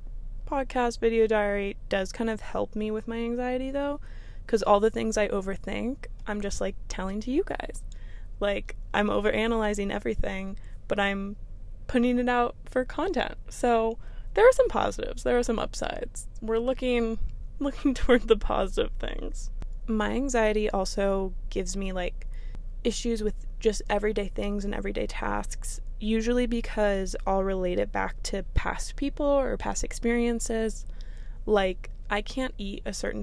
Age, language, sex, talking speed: 20-39, English, female, 155 wpm